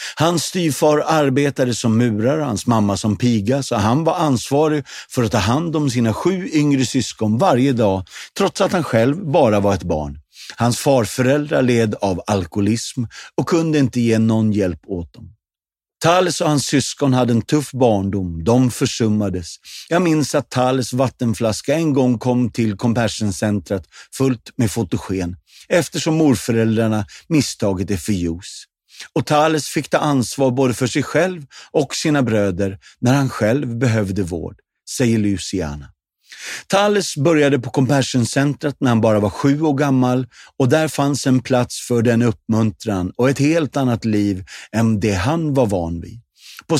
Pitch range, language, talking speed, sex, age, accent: 105-140 Hz, Swedish, 160 wpm, male, 50-69, native